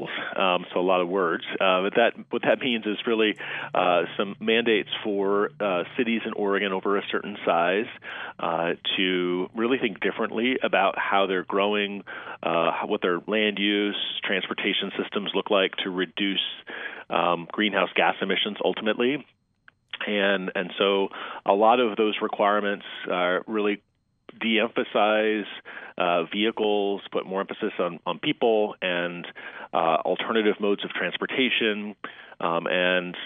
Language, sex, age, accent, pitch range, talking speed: English, male, 40-59, American, 95-110 Hz, 145 wpm